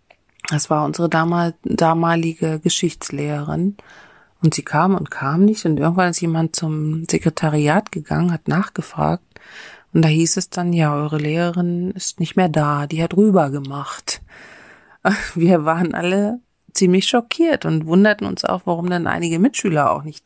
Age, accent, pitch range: 30-49, German, 165-190 Hz